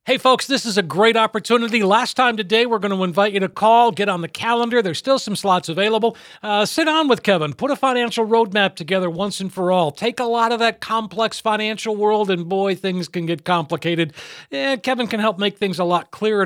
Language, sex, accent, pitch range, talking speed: English, male, American, 180-230 Hz, 230 wpm